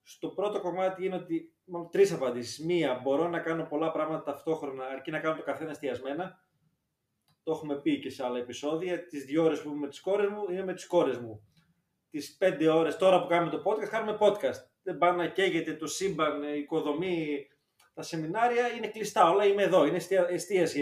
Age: 20-39